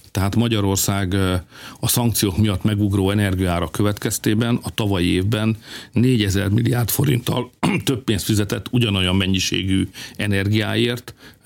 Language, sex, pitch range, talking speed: Hungarian, male, 95-115 Hz, 105 wpm